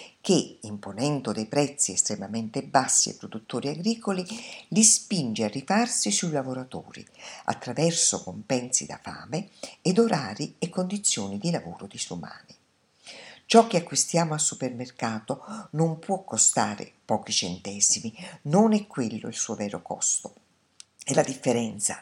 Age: 50-69